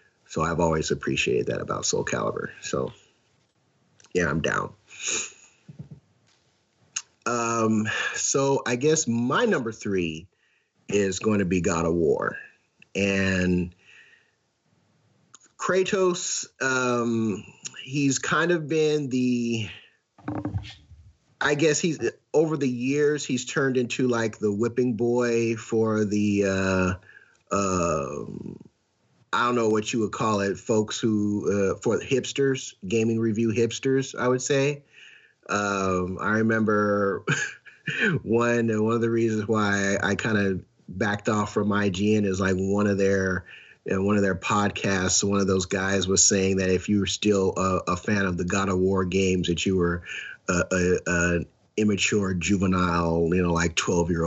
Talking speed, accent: 145 wpm, American